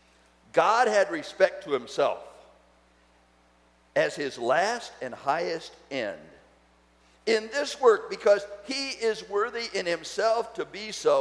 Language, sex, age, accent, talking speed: English, male, 50-69, American, 125 wpm